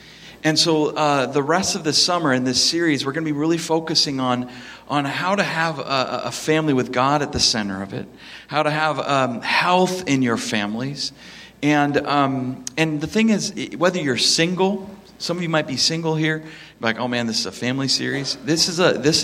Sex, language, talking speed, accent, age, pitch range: male, English, 210 wpm, American, 40-59, 120-155 Hz